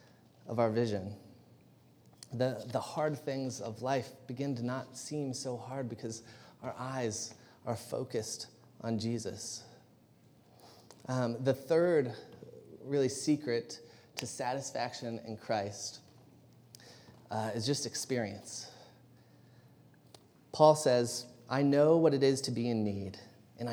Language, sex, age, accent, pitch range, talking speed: English, male, 30-49, American, 110-130 Hz, 120 wpm